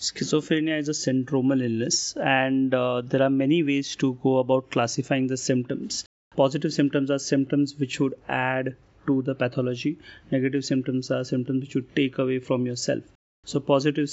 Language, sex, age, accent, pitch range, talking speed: English, male, 30-49, Indian, 130-145 Hz, 165 wpm